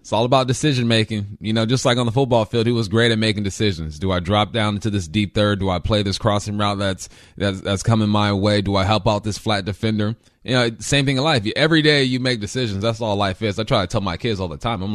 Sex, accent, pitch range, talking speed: male, American, 105-135 Hz, 285 wpm